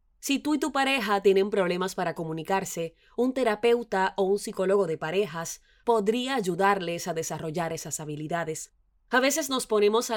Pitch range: 175-225 Hz